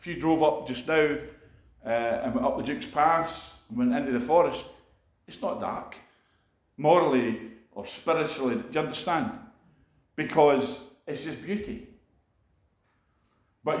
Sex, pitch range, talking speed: male, 120-190 Hz, 140 wpm